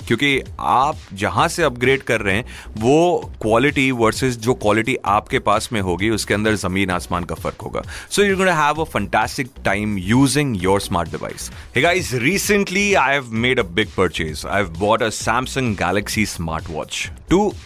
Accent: native